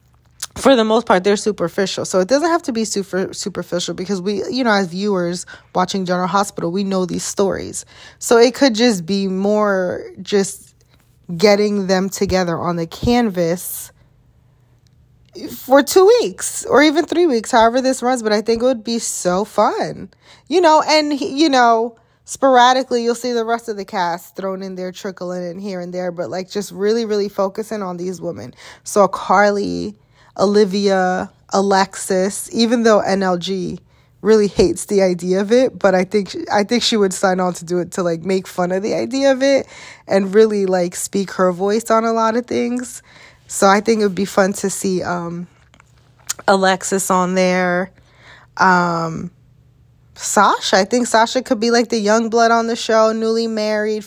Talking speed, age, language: 180 wpm, 20-39, English